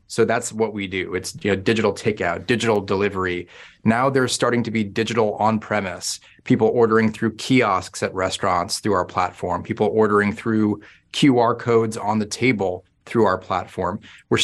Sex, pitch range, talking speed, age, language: male, 100-125 Hz, 160 wpm, 30-49, English